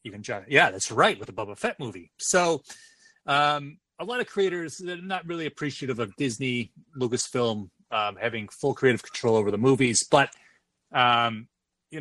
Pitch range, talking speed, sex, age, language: 110-140 Hz, 170 wpm, male, 30-49, English